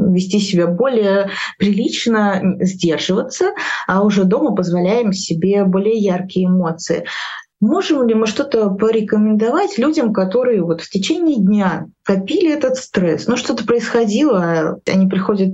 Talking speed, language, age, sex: 125 wpm, Russian, 20-39, female